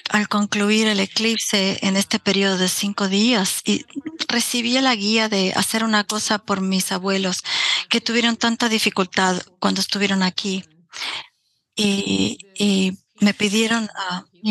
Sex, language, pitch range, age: female, English, 190-215 Hz, 40-59